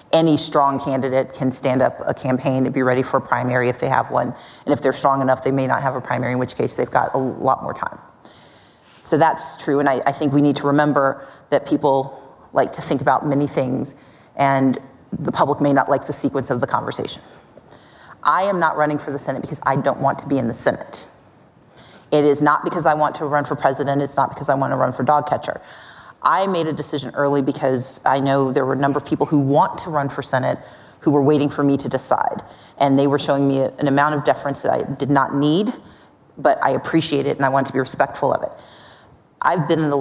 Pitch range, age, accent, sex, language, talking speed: 135-150 Hz, 30-49, American, female, English, 240 wpm